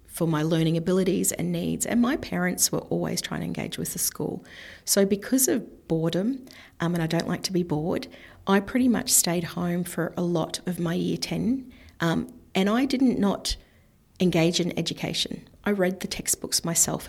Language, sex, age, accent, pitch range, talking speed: English, female, 40-59, Australian, 160-200 Hz, 190 wpm